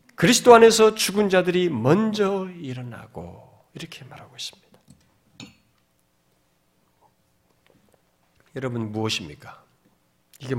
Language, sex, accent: Korean, male, native